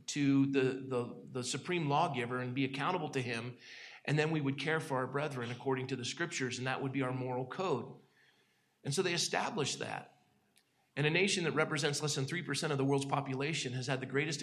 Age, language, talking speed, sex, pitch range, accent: 40-59, English, 210 wpm, male, 125-145 Hz, American